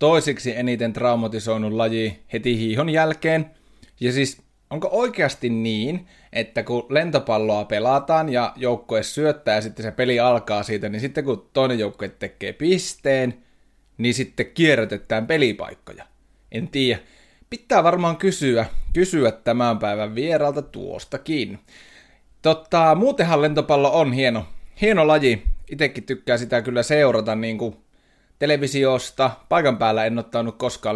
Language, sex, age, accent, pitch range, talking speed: Finnish, male, 30-49, native, 115-150 Hz, 125 wpm